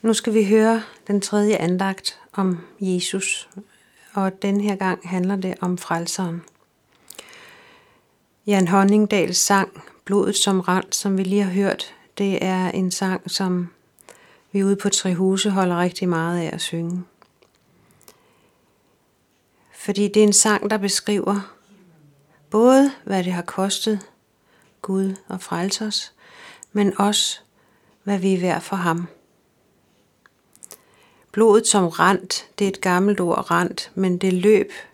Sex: female